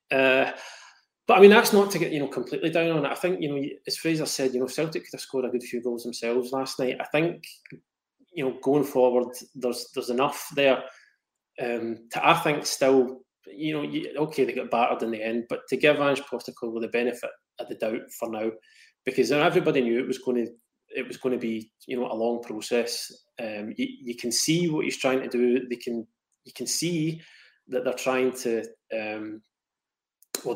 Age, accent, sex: 20-39, British, male